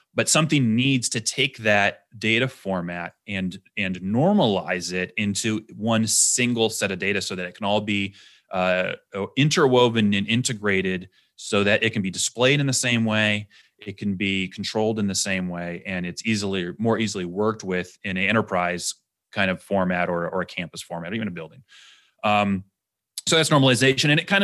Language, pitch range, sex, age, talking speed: English, 100-120 Hz, male, 30-49, 185 wpm